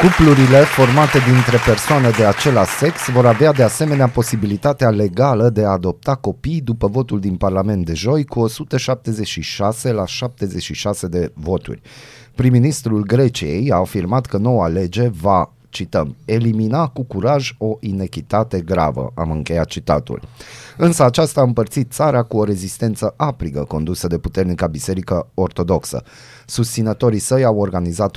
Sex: male